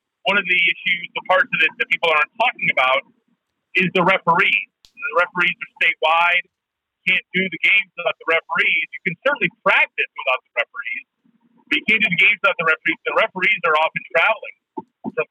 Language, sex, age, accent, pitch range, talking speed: English, male, 40-59, American, 165-230 Hz, 190 wpm